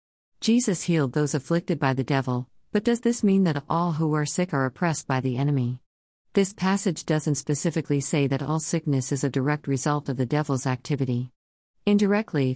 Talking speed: 180 wpm